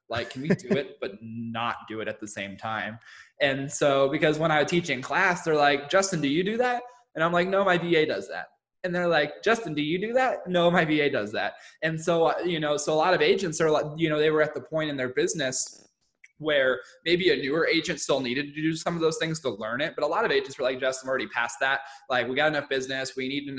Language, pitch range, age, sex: English, 130-170 Hz, 20-39, male